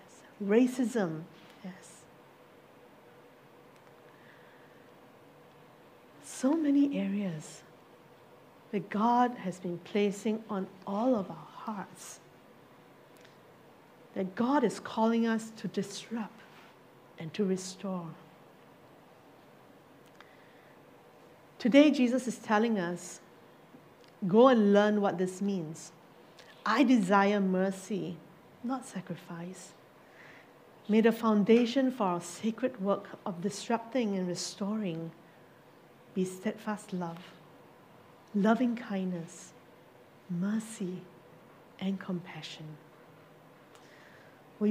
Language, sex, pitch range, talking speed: English, female, 170-220 Hz, 80 wpm